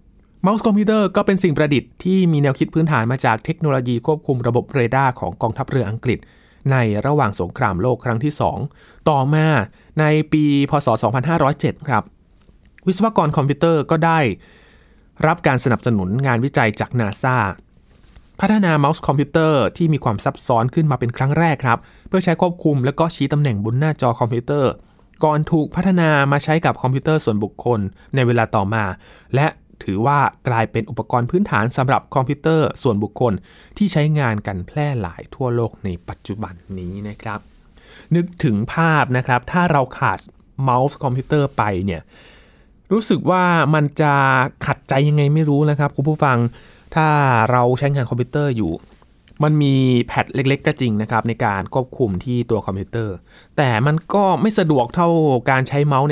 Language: Thai